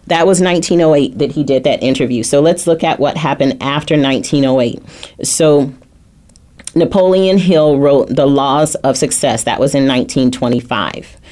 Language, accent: English, American